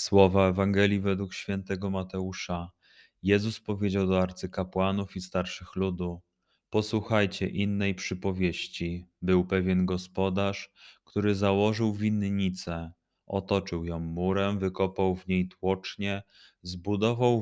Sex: male